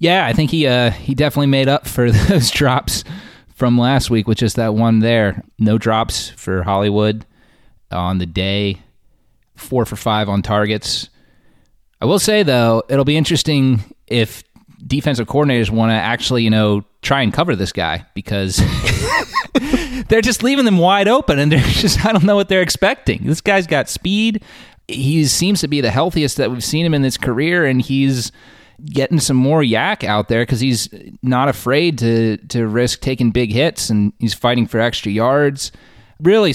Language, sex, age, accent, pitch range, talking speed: English, male, 30-49, American, 105-135 Hz, 180 wpm